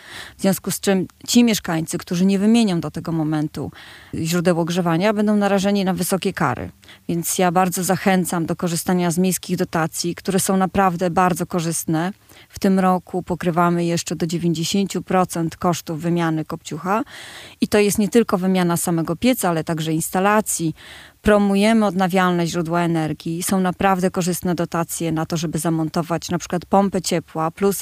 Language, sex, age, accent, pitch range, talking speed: Polish, female, 20-39, native, 165-195 Hz, 155 wpm